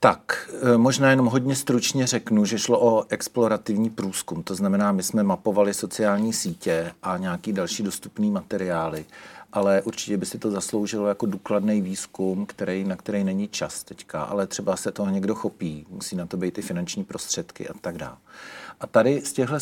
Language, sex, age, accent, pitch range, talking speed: Czech, male, 40-59, native, 100-120 Hz, 175 wpm